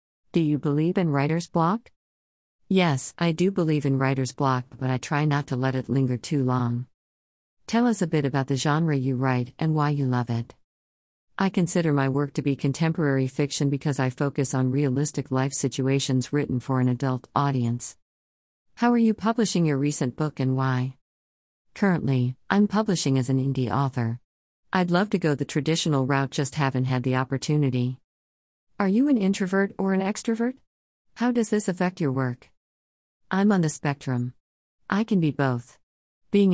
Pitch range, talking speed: 125-160 Hz, 175 wpm